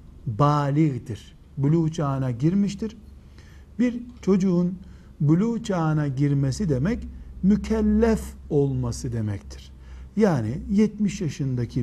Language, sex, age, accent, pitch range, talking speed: Turkish, male, 60-79, native, 135-195 Hz, 80 wpm